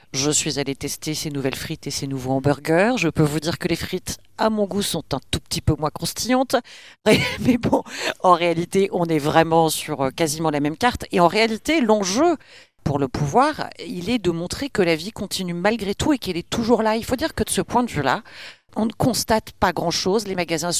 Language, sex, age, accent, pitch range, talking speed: French, female, 50-69, French, 140-185 Hz, 225 wpm